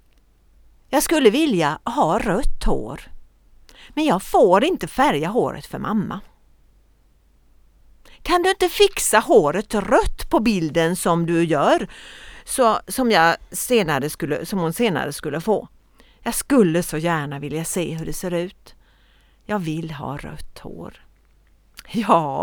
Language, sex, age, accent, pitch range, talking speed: Swedish, female, 50-69, native, 165-235 Hz, 135 wpm